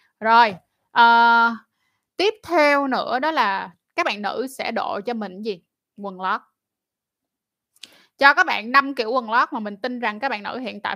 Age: 20-39